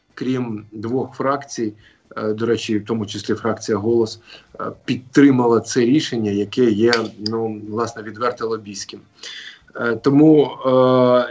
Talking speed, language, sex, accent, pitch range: 110 wpm, Ukrainian, male, native, 120-155 Hz